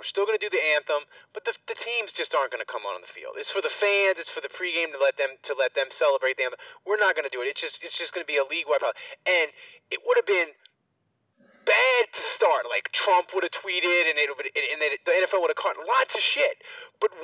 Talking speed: 280 wpm